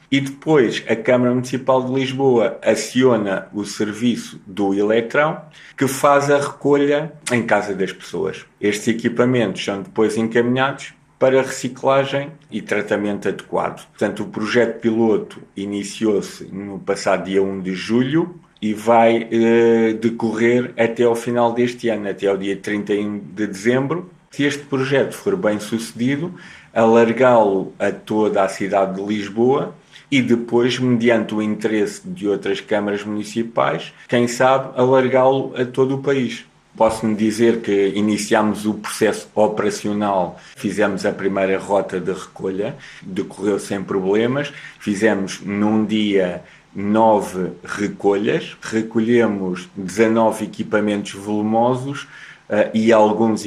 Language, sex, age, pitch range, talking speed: Portuguese, male, 50-69, 105-130 Hz, 125 wpm